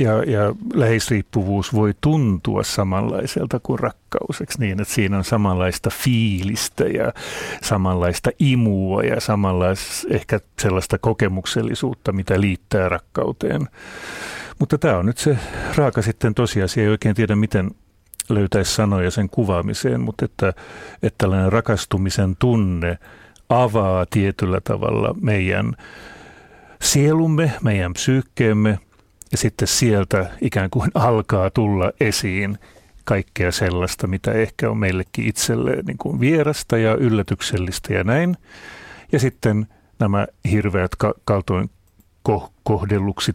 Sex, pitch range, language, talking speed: male, 95-115 Hz, Finnish, 110 wpm